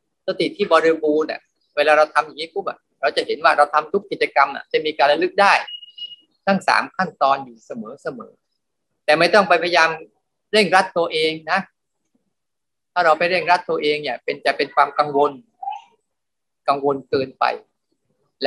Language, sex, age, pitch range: Thai, male, 30-49, 155-205 Hz